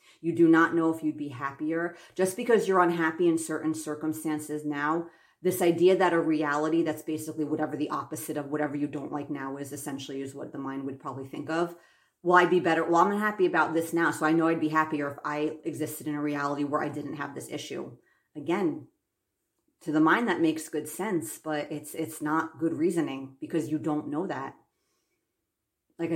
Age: 40-59